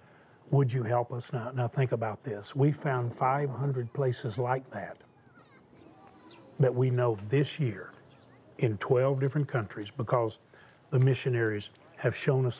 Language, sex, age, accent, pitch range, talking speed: English, male, 40-59, American, 120-140 Hz, 145 wpm